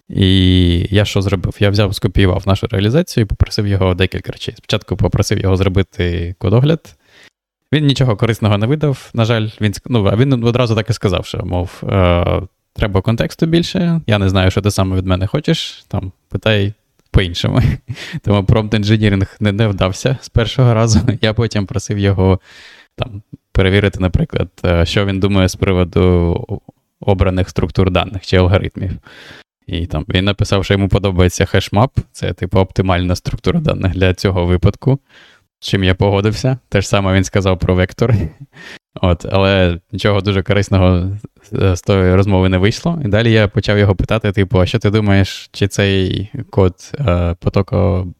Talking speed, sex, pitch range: 155 wpm, male, 95-115 Hz